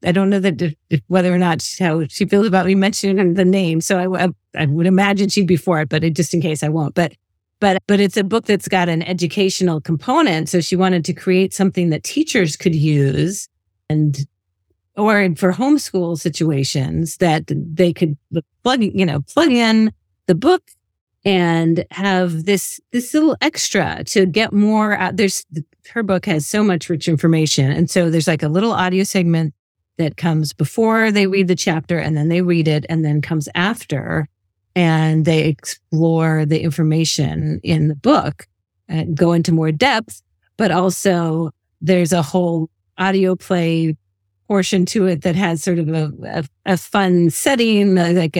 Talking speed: 175 wpm